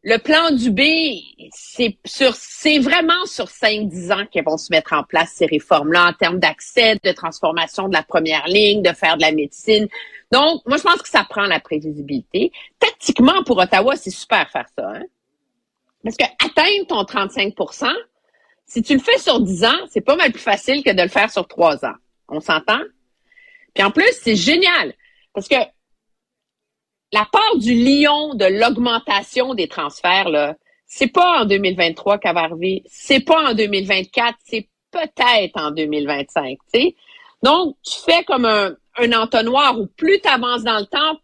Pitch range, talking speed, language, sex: 190-290 Hz, 180 wpm, French, female